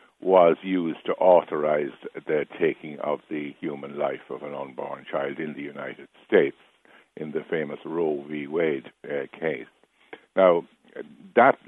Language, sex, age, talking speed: English, male, 60-79, 145 wpm